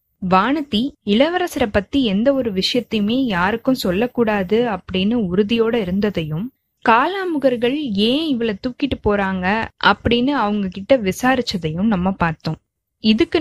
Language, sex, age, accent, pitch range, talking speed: Tamil, female, 20-39, native, 195-265 Hz, 105 wpm